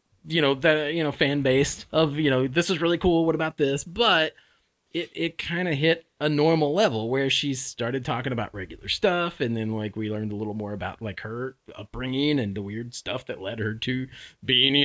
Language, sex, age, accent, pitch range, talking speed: English, male, 30-49, American, 120-160 Hz, 220 wpm